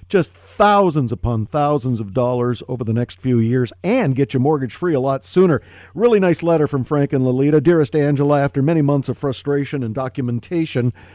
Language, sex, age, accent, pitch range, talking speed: English, male, 50-69, American, 110-150 Hz, 190 wpm